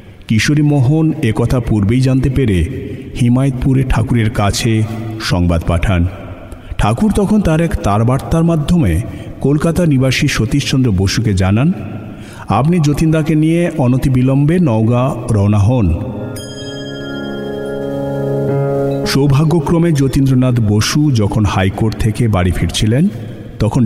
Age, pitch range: 50-69, 100-140 Hz